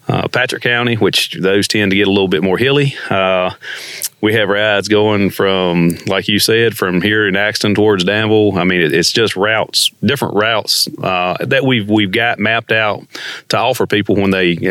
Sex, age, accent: male, 30-49, American